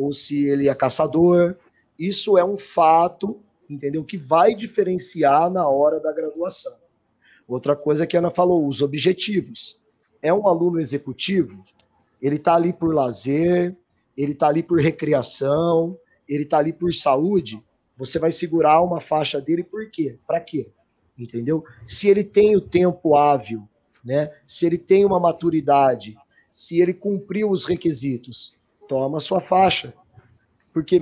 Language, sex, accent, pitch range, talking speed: Portuguese, male, Brazilian, 140-185 Hz, 150 wpm